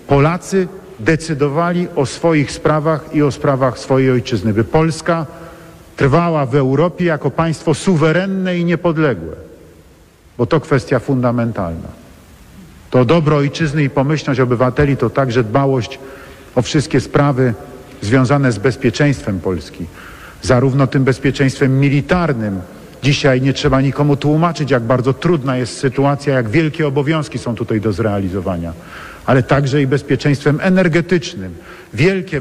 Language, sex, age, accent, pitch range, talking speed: Polish, male, 50-69, native, 125-160 Hz, 125 wpm